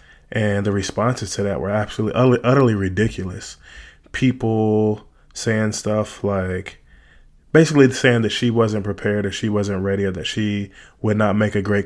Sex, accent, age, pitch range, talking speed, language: male, American, 20-39, 100-110 Hz, 155 wpm, English